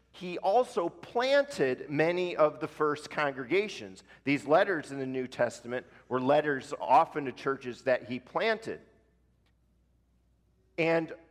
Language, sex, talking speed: English, male, 120 wpm